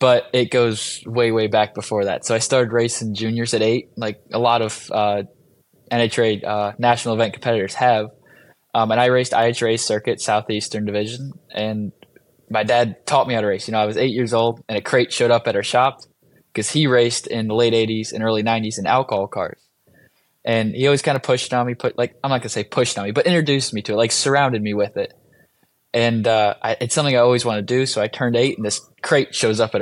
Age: 10-29